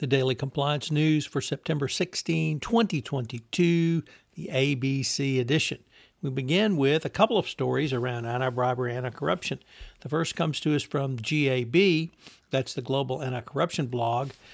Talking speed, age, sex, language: 140 wpm, 60-79, male, English